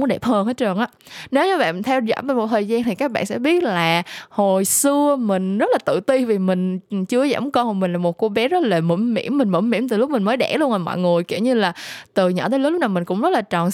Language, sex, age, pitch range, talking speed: Vietnamese, female, 20-39, 185-265 Hz, 295 wpm